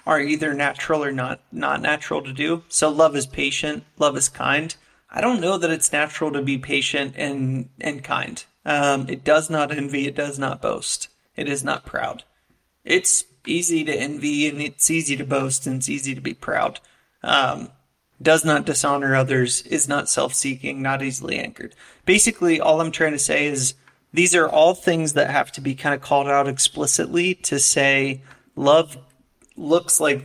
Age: 30-49